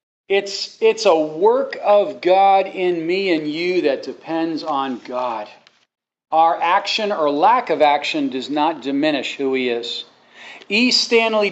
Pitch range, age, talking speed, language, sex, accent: 145-225 Hz, 40-59, 145 wpm, English, male, American